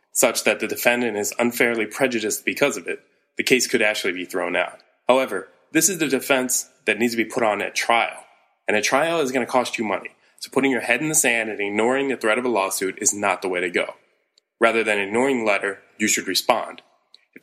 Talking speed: 235 wpm